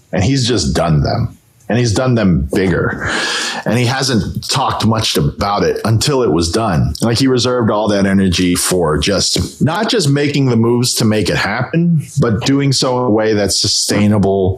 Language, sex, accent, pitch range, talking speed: English, male, American, 95-130 Hz, 190 wpm